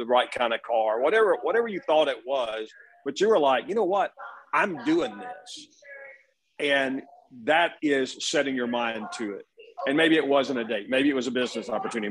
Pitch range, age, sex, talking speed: 120-195 Hz, 40-59, male, 205 wpm